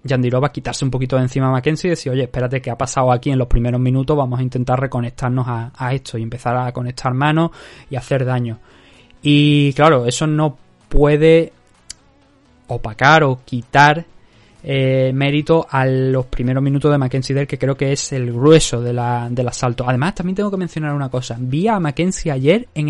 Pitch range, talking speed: 125-165 Hz, 190 wpm